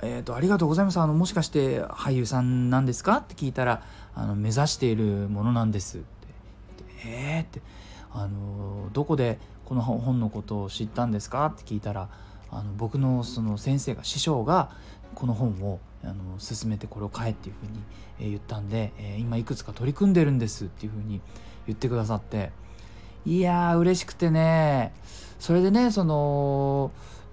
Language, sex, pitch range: Japanese, male, 105-155 Hz